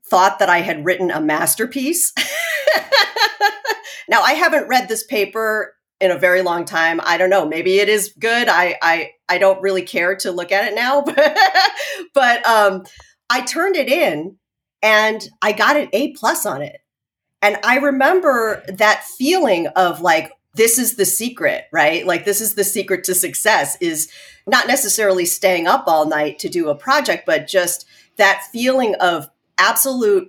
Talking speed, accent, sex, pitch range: 170 wpm, American, female, 175-255 Hz